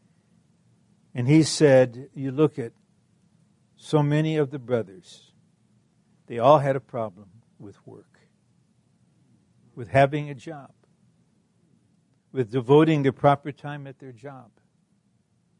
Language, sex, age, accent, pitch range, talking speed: English, male, 60-79, American, 115-150 Hz, 115 wpm